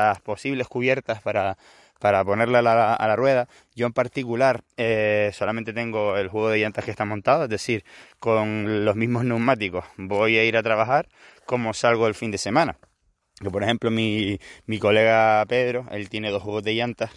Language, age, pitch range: Spanish, 20-39, 105-120 Hz